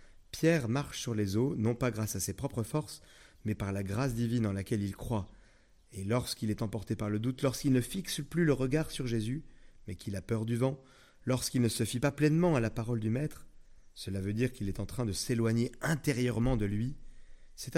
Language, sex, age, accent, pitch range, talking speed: French, male, 30-49, French, 100-130 Hz, 225 wpm